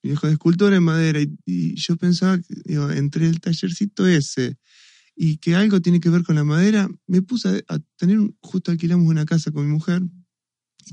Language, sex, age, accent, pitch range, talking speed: Spanish, male, 20-39, Argentinian, 130-175 Hz, 210 wpm